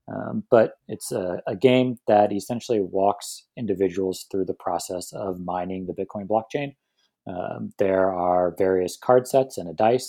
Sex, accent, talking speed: male, American, 160 wpm